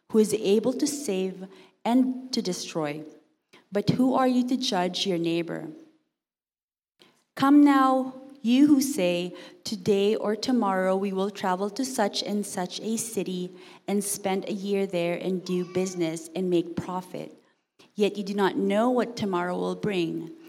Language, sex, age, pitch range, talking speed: English, female, 30-49, 180-225 Hz, 155 wpm